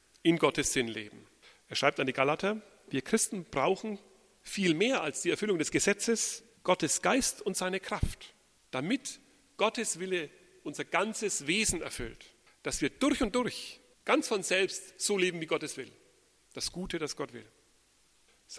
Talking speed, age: 165 wpm, 40-59